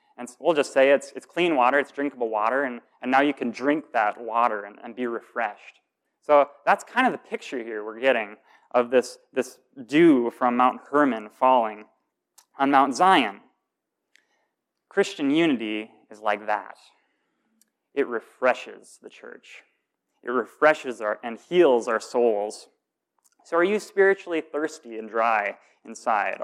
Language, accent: English, American